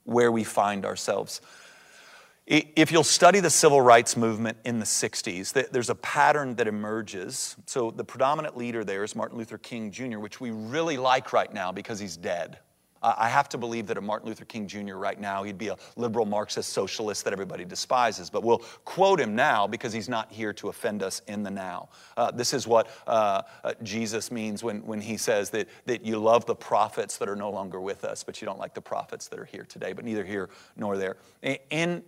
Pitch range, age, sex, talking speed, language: 115-180 Hz, 40-59, male, 215 wpm, English